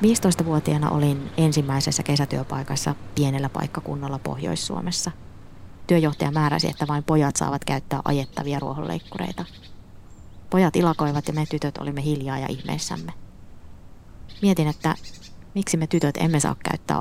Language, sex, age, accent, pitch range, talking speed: Finnish, female, 20-39, native, 100-160 Hz, 115 wpm